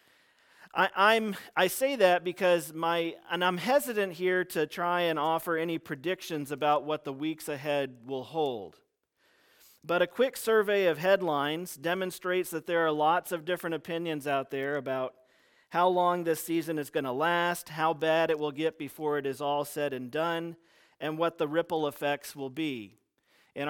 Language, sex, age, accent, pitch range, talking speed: English, male, 40-59, American, 150-185 Hz, 175 wpm